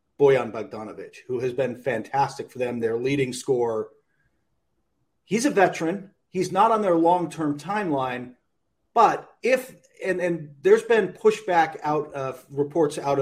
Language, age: English, 40-59